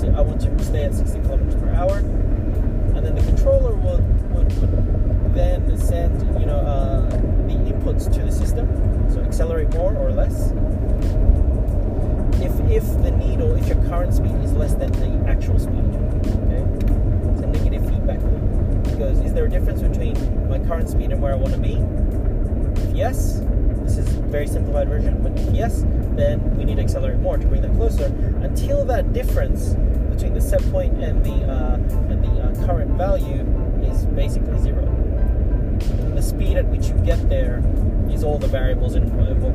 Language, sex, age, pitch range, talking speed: English, male, 30-49, 90-105 Hz, 180 wpm